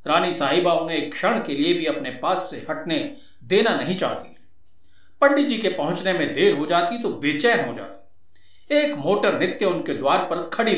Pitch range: 190-285 Hz